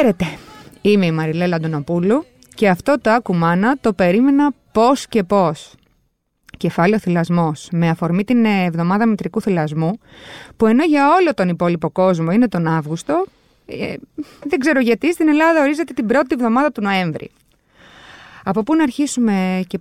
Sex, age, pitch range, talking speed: female, 20-39, 175-250 Hz, 140 wpm